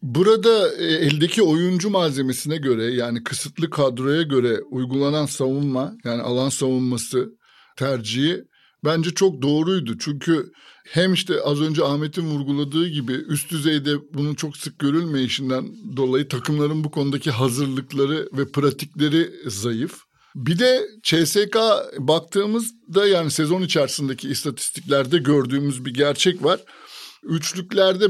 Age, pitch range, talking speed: 50-69, 135-175 Hz, 115 wpm